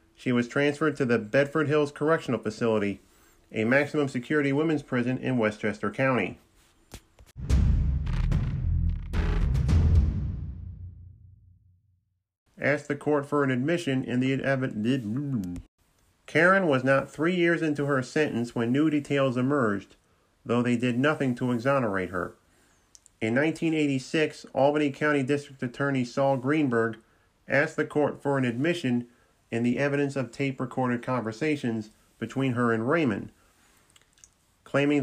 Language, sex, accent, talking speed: English, male, American, 120 wpm